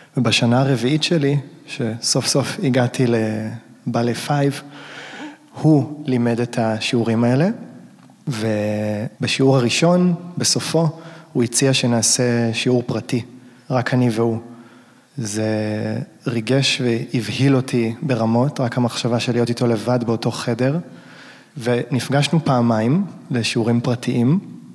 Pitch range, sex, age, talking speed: 120-145 Hz, male, 20-39, 100 wpm